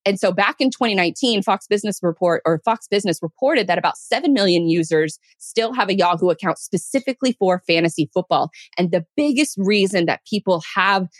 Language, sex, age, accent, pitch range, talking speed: English, female, 20-39, American, 165-210 Hz, 175 wpm